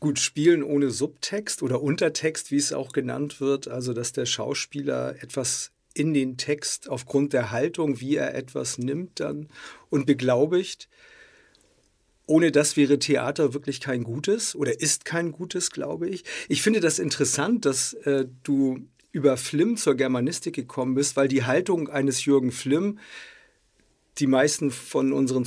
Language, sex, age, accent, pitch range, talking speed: German, male, 50-69, German, 130-150 Hz, 155 wpm